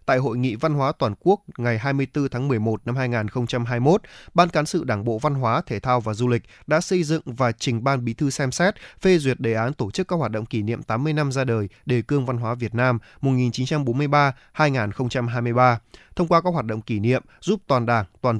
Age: 20-39